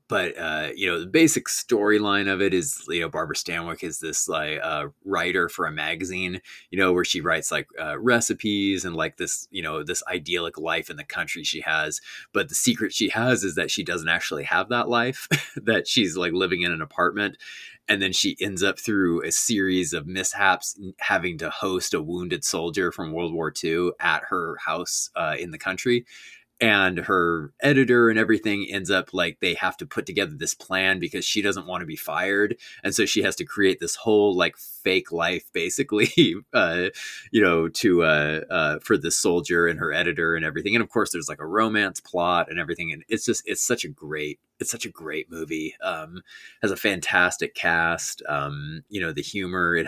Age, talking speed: 20-39, 205 wpm